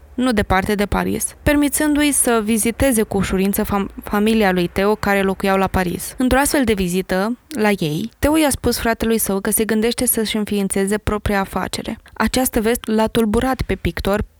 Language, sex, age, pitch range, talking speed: Romanian, female, 20-39, 205-245 Hz, 170 wpm